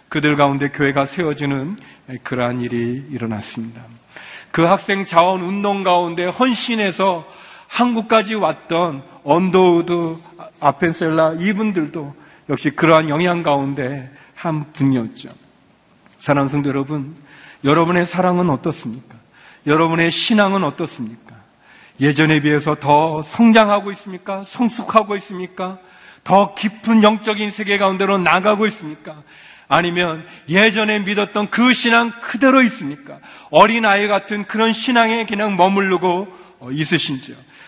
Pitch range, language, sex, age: 150-210 Hz, Korean, male, 40-59